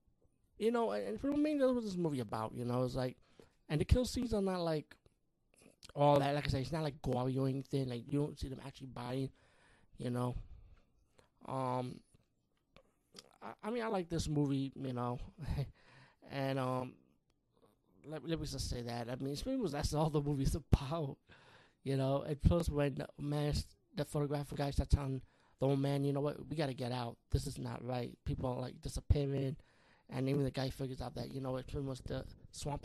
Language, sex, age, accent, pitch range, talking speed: English, male, 20-39, American, 125-150 Hz, 205 wpm